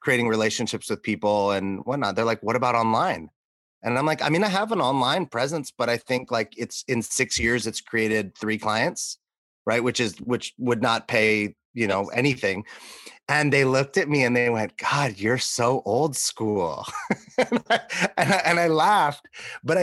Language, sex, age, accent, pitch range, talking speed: English, male, 30-49, American, 115-145 Hz, 195 wpm